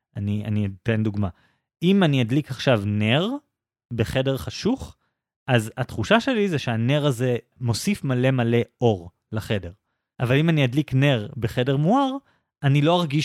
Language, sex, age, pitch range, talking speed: Hebrew, male, 20-39, 115-155 Hz, 145 wpm